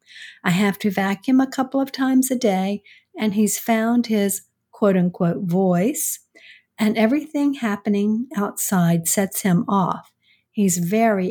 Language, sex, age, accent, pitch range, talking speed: English, female, 50-69, American, 185-230 Hz, 135 wpm